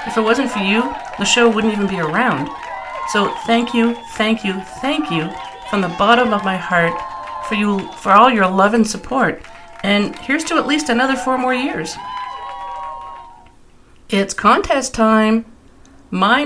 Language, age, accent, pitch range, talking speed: English, 50-69, American, 195-250 Hz, 165 wpm